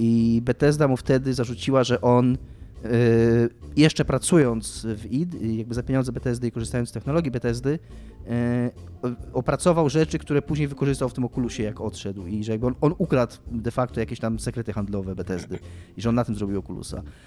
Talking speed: 175 wpm